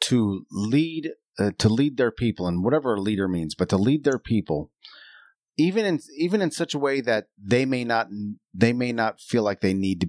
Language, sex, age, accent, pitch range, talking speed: English, male, 40-59, American, 100-150 Hz, 215 wpm